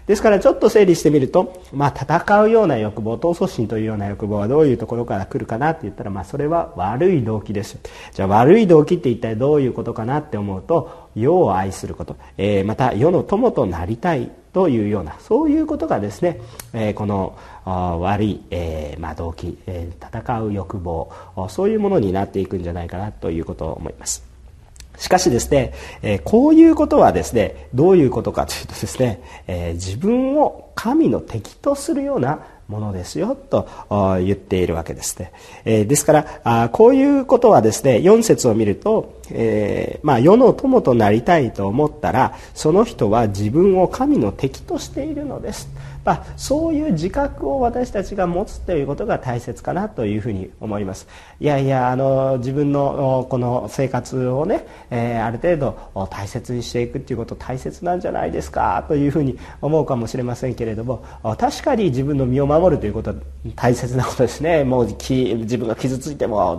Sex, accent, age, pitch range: male, native, 40-59, 100-160 Hz